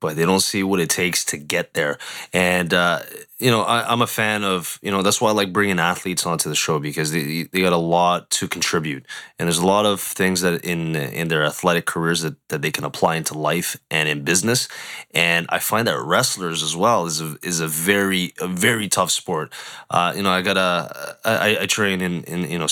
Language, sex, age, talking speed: English, male, 20-39, 235 wpm